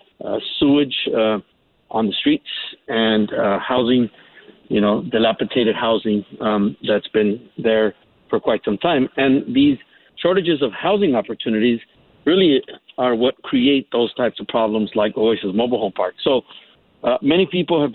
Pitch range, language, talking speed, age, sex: 110-140 Hz, English, 150 wpm, 50-69, male